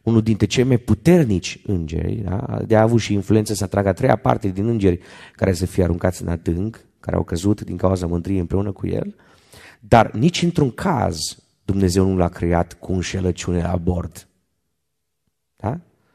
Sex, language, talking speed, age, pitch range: male, Romanian, 170 wpm, 30-49, 90-115 Hz